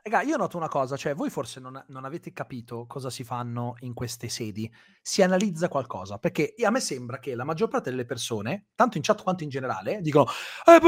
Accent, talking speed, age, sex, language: native, 210 wpm, 30-49, male, Italian